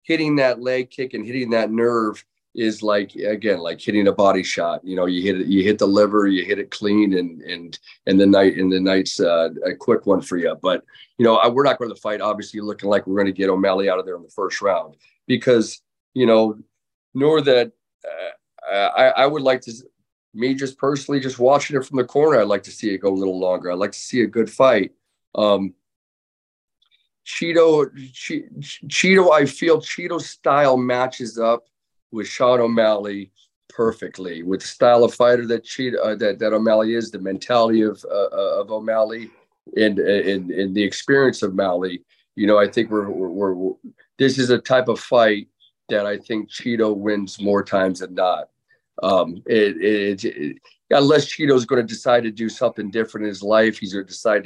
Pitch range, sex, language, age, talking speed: 100-125 Hz, male, English, 30-49, 205 wpm